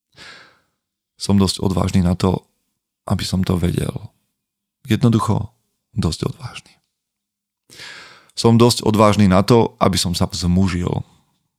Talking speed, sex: 110 wpm, male